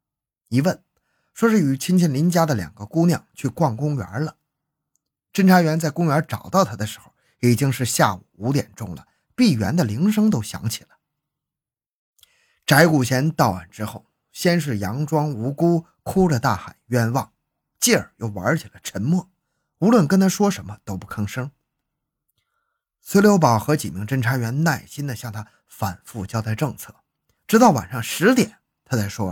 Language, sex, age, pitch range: Chinese, male, 20-39, 115-165 Hz